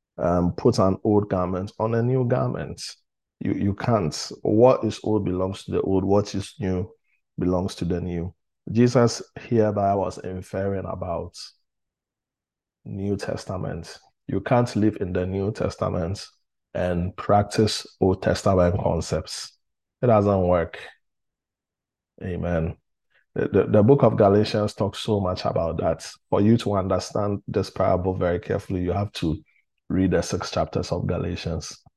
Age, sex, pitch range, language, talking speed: 20-39, male, 95-110 Hz, English, 145 wpm